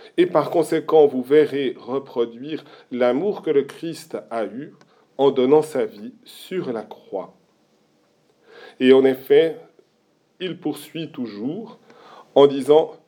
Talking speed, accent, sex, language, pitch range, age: 125 wpm, French, male, French, 130-165 Hz, 40-59